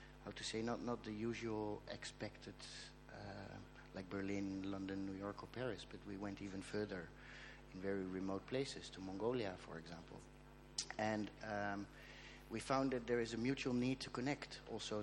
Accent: Dutch